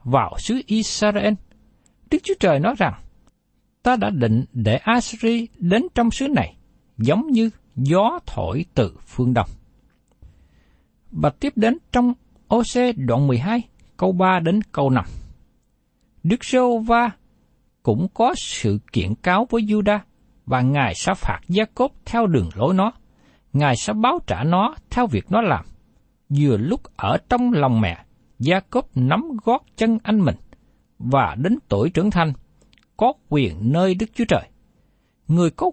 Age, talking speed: 60-79, 150 wpm